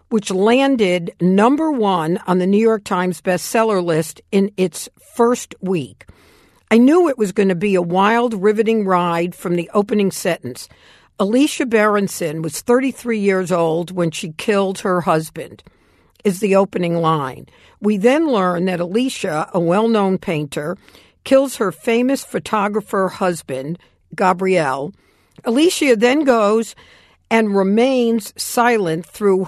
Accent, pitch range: American, 175-225 Hz